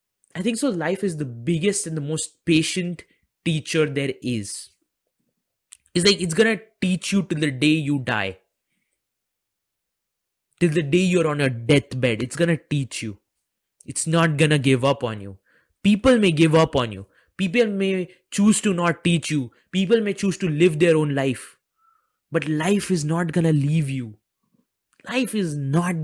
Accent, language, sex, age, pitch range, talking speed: Indian, English, male, 20-39, 140-205 Hz, 180 wpm